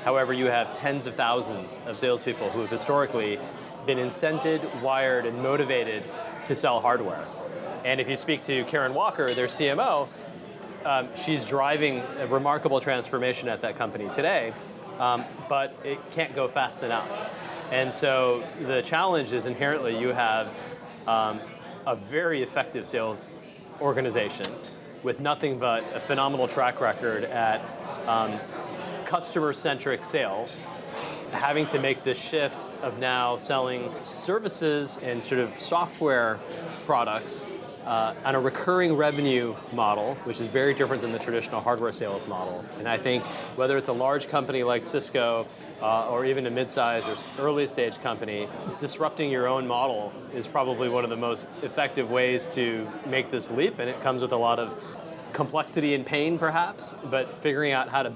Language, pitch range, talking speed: English, 120-145 Hz, 155 wpm